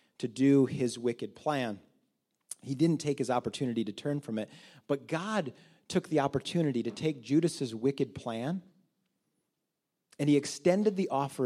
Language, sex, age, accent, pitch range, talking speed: English, male, 40-59, American, 125-165 Hz, 150 wpm